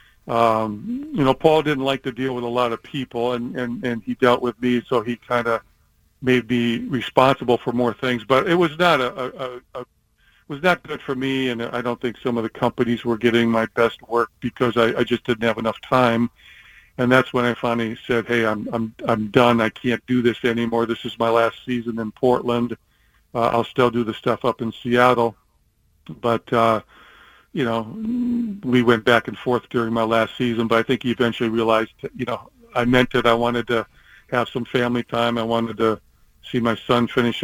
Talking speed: 215 wpm